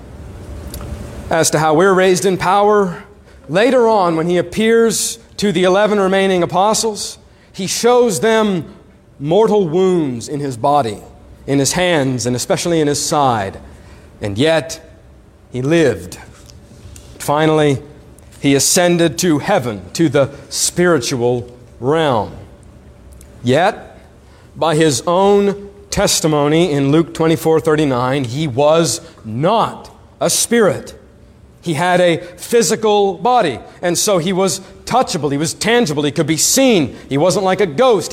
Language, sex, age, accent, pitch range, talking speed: English, male, 40-59, American, 145-210 Hz, 130 wpm